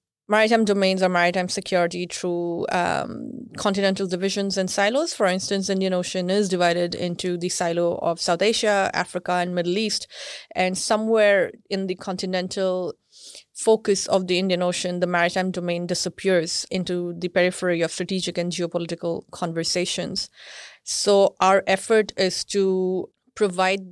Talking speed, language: 140 wpm, English